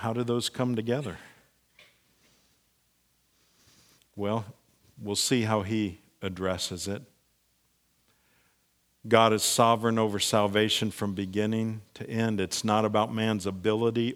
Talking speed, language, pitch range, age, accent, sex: 110 wpm, English, 95-115 Hz, 50-69, American, male